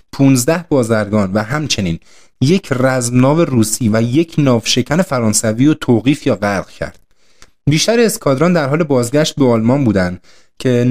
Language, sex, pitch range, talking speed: Persian, male, 110-150 Hz, 145 wpm